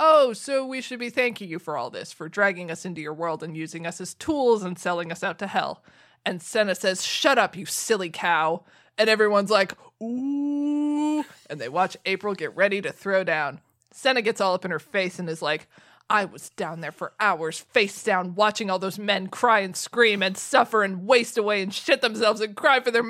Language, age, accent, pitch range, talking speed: English, 20-39, American, 185-245 Hz, 220 wpm